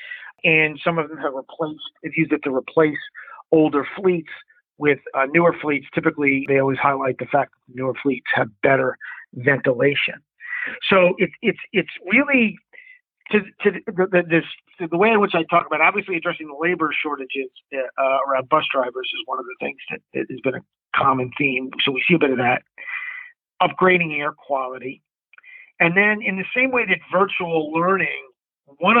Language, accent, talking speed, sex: English, American, 180 wpm, male